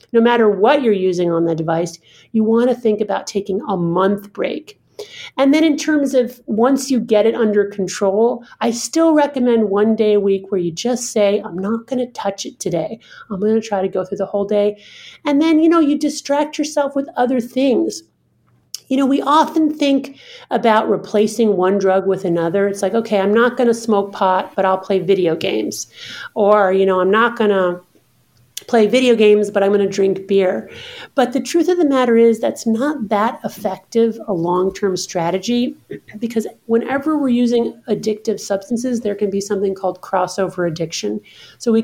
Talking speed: 195 wpm